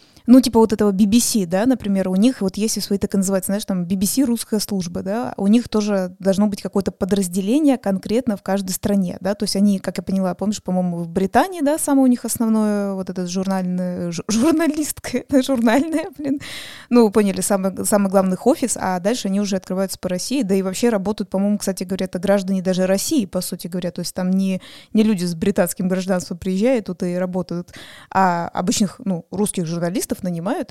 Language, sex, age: Russian, female, 20-39